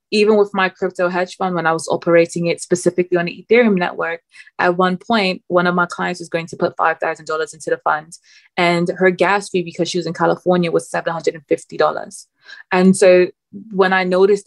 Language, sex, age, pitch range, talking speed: English, female, 20-39, 170-190 Hz, 195 wpm